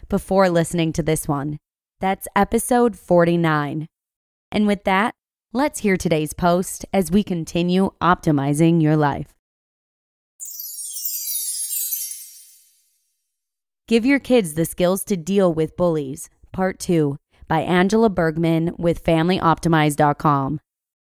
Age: 20-39